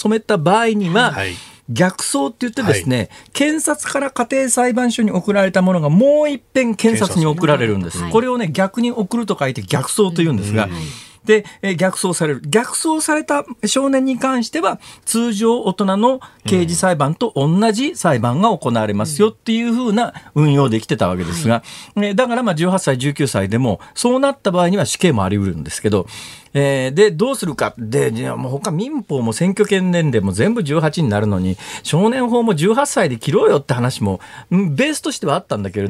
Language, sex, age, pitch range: Japanese, male, 40-59, 140-230 Hz